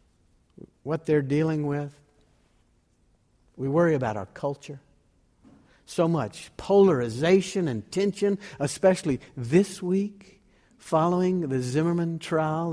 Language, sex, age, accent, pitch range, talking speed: English, male, 60-79, American, 130-195 Hz, 100 wpm